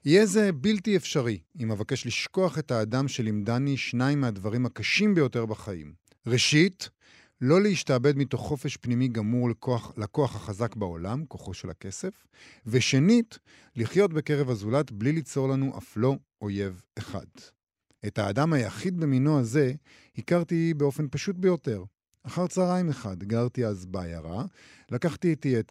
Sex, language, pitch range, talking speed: male, Hebrew, 105-150 Hz, 135 wpm